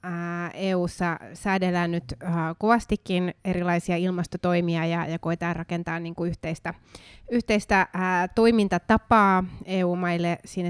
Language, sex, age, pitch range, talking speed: Finnish, female, 20-39, 165-185 Hz, 110 wpm